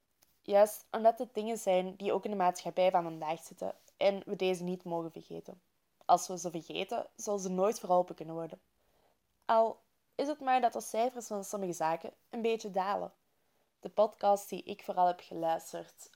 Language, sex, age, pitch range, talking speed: Dutch, female, 20-39, 170-210 Hz, 180 wpm